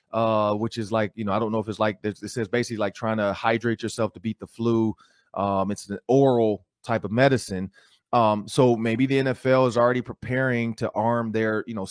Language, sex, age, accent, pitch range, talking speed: English, male, 30-49, American, 100-120 Hz, 220 wpm